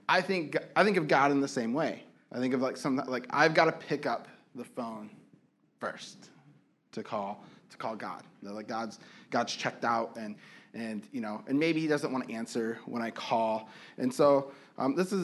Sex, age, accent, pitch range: male, 20-39, American, 130-155 Hz